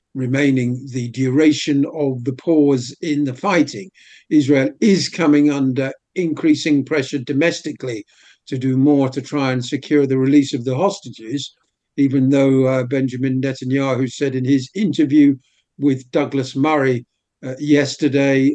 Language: English